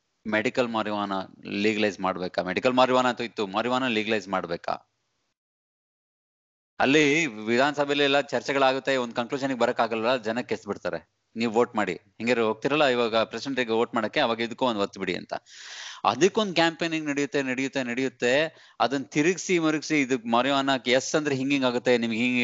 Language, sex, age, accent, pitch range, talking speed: Kannada, male, 20-39, native, 105-135 Hz, 145 wpm